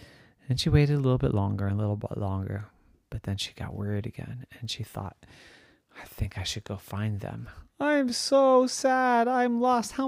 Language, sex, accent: English, male, American